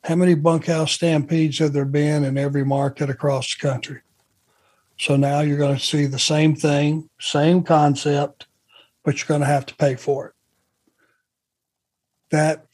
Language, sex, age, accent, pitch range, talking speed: English, male, 60-79, American, 150-185 Hz, 160 wpm